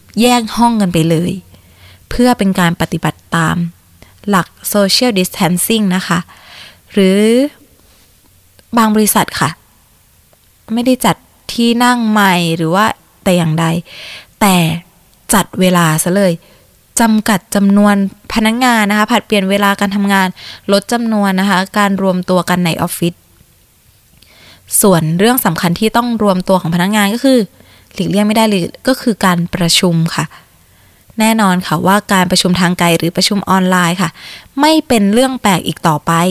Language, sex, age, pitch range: Thai, female, 20-39, 175-220 Hz